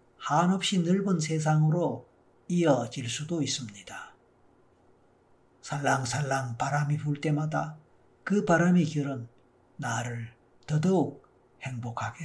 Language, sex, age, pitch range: Korean, male, 50-69, 120-150 Hz